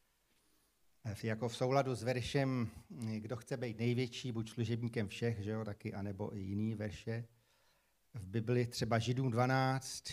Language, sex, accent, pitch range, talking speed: Czech, male, native, 115-140 Hz, 140 wpm